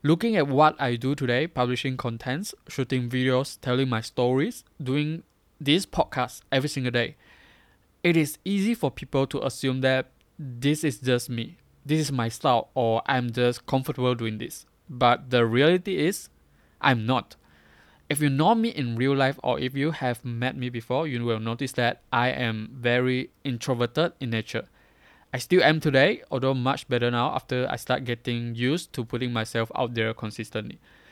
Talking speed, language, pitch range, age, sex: 175 wpm, English, 120-140 Hz, 20-39, male